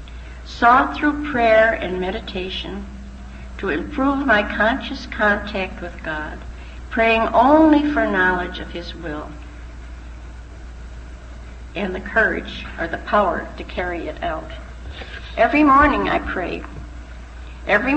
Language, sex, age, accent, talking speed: English, female, 60-79, American, 115 wpm